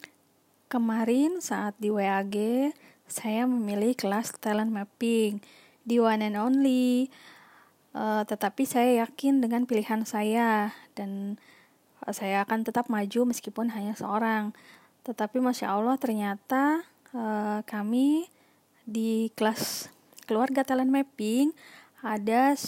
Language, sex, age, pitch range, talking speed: Indonesian, female, 20-39, 210-250 Hz, 105 wpm